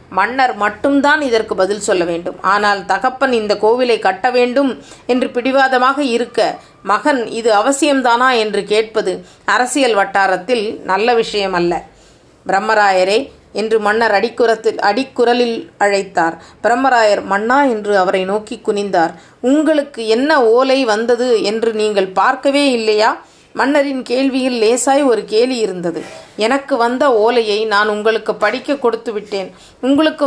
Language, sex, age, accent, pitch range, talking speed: Tamil, female, 30-49, native, 205-255 Hz, 115 wpm